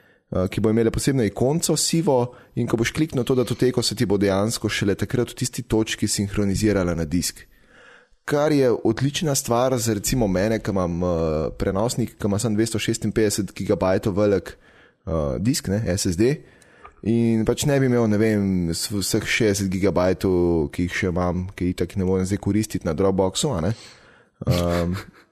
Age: 20-39